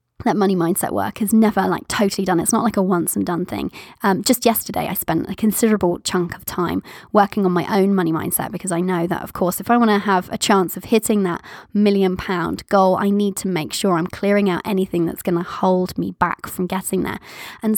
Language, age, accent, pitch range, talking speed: English, 20-39, British, 185-225 Hz, 240 wpm